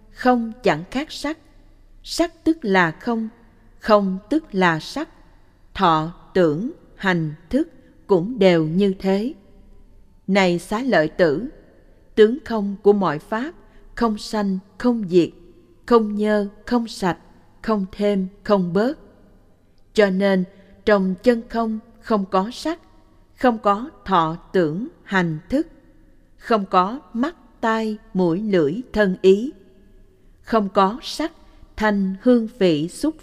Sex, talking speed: female, 125 wpm